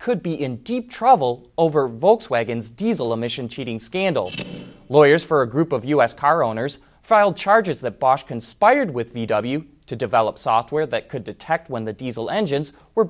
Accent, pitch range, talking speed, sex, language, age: American, 120-195 Hz, 170 wpm, male, English, 30-49